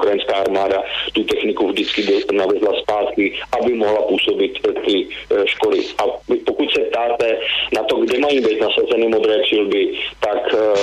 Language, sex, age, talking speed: Slovak, male, 40-59, 145 wpm